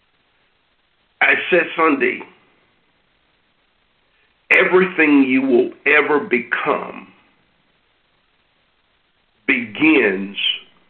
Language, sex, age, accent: English, male, 50-69, American